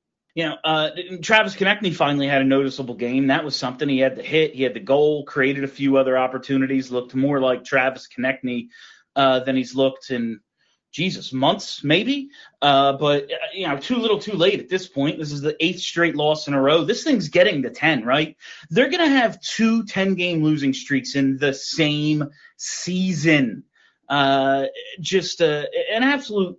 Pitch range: 135-215 Hz